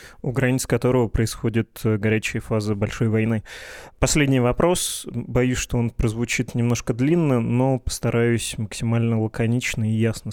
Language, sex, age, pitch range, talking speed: Russian, male, 20-39, 110-125 Hz, 130 wpm